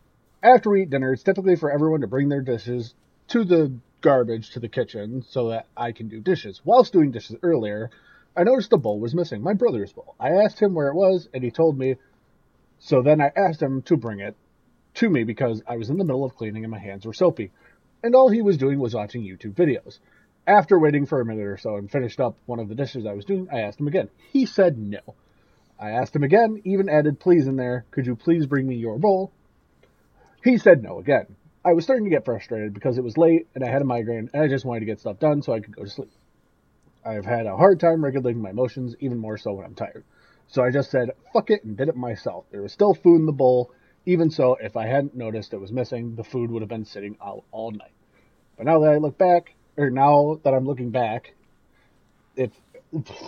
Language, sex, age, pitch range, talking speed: English, male, 30-49, 115-170 Hz, 240 wpm